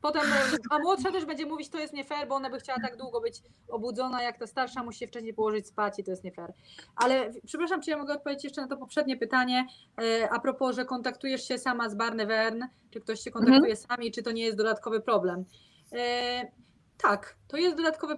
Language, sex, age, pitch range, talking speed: Polish, female, 20-39, 215-275 Hz, 220 wpm